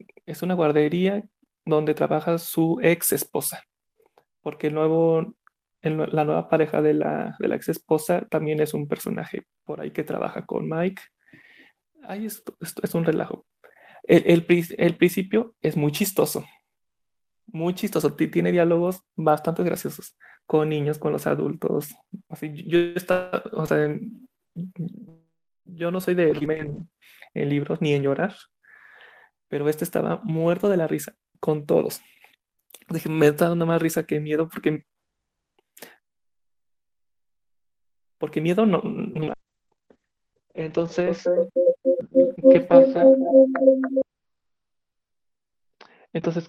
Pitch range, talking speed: 155-200 Hz, 125 wpm